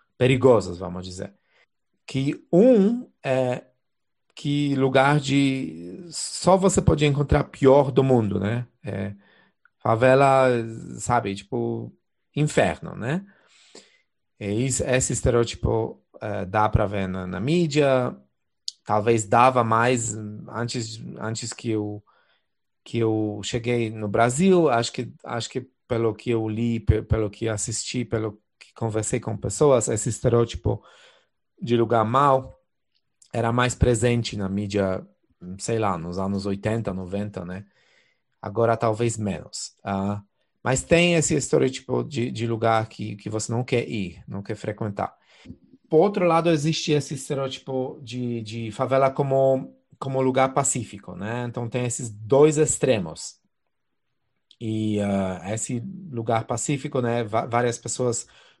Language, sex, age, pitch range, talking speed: Portuguese, male, 30-49, 105-130 Hz, 130 wpm